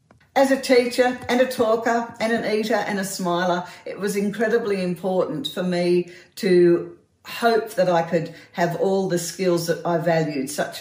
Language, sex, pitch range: English, female, 160-200 Hz